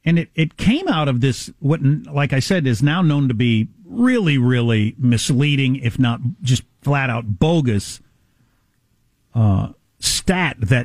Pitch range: 110-145 Hz